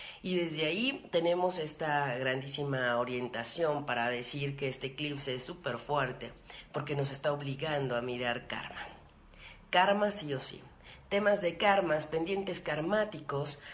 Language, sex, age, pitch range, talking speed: Spanish, female, 40-59, 130-180 Hz, 135 wpm